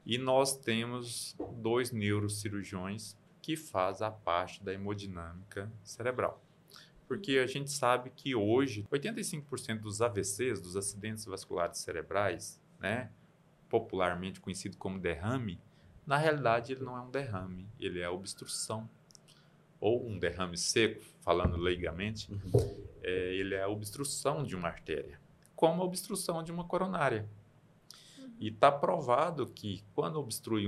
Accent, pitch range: Brazilian, 95-135 Hz